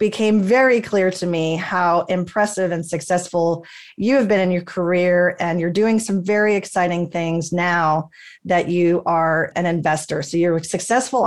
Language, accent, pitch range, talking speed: English, American, 170-215 Hz, 170 wpm